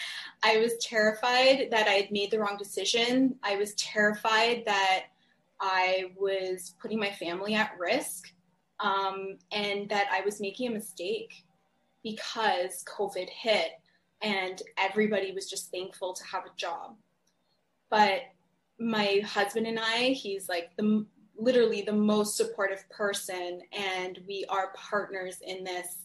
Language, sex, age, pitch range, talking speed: English, female, 20-39, 190-225 Hz, 140 wpm